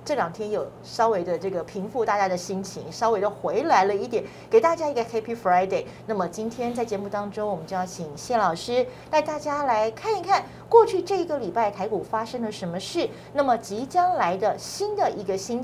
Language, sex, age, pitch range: Chinese, female, 40-59, 195-265 Hz